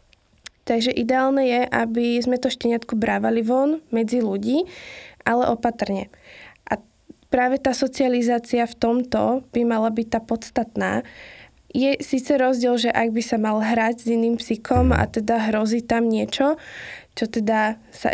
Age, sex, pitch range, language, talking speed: 20-39, female, 220-240 Hz, Slovak, 145 wpm